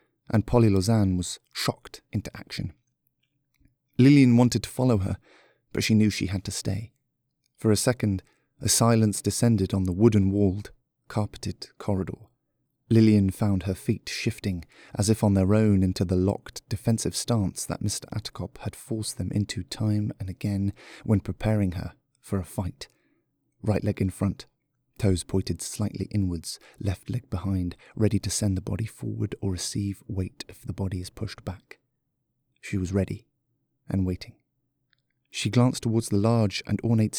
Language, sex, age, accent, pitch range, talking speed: English, male, 30-49, British, 95-120 Hz, 160 wpm